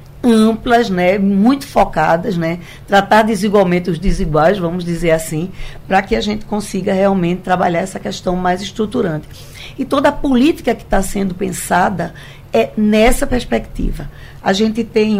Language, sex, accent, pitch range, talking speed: Portuguese, female, Brazilian, 170-220 Hz, 145 wpm